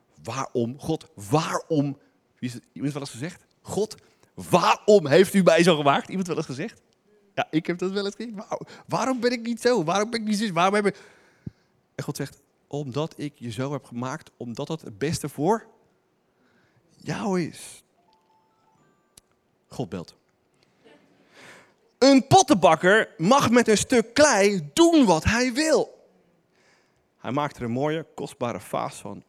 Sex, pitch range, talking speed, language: male, 125-190 Hz, 160 wpm, Dutch